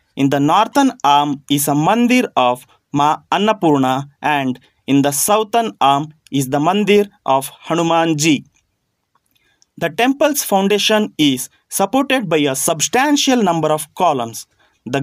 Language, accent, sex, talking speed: English, Indian, male, 130 wpm